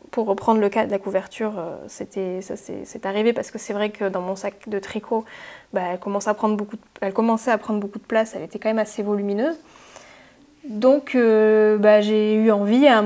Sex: female